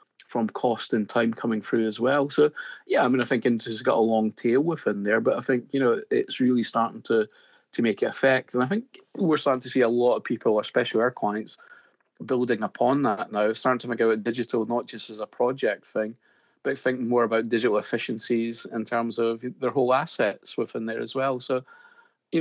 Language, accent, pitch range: English, British, 115-130 Hz